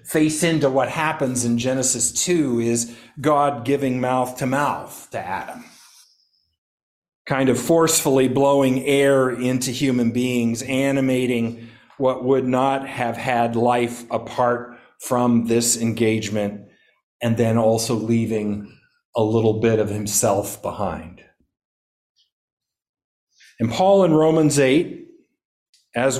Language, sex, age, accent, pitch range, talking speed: English, male, 50-69, American, 115-135 Hz, 115 wpm